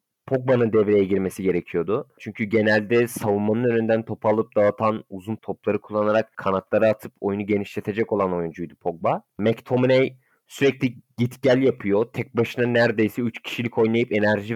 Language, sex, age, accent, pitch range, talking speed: Turkish, male, 30-49, native, 110-135 Hz, 135 wpm